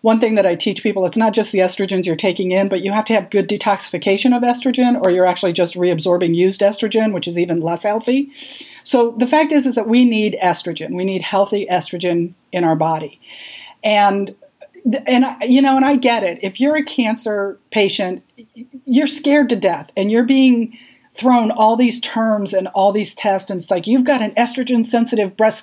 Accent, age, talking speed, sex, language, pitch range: American, 40-59, 205 wpm, female, English, 185-240 Hz